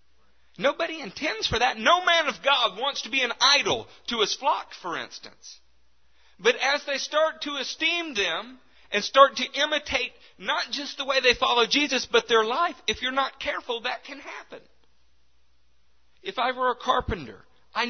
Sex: male